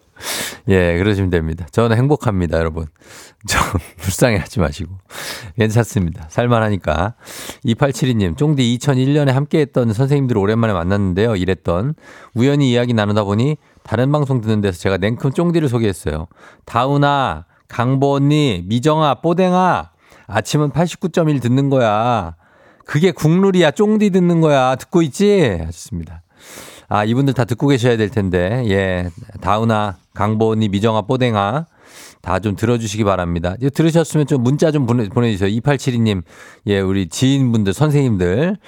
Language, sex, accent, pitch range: Korean, male, native, 100-145 Hz